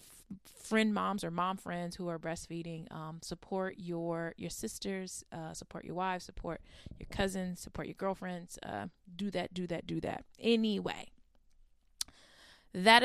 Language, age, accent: English, 20-39, American